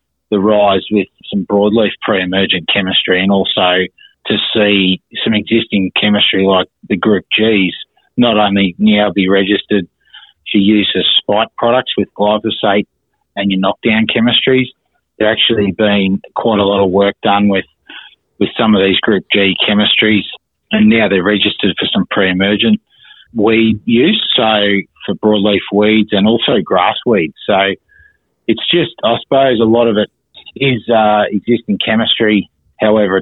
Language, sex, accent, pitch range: English, male, Australian, 95-110 Hz